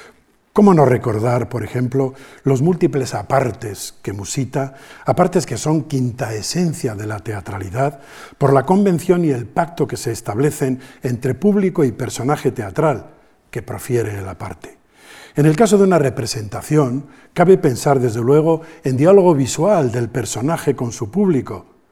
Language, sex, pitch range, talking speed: Spanish, male, 120-150 Hz, 150 wpm